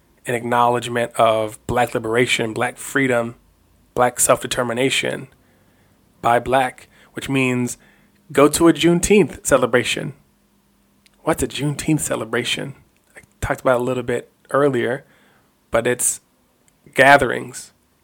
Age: 20-39